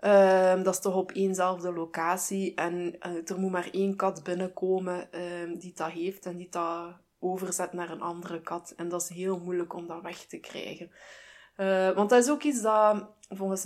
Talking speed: 200 wpm